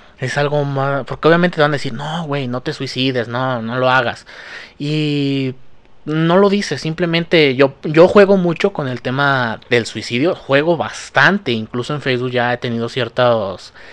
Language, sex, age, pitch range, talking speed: Spanish, male, 30-49, 115-145 Hz, 175 wpm